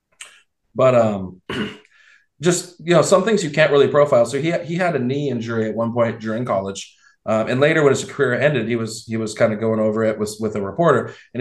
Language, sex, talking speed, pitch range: English, male, 225 wpm, 105-125 Hz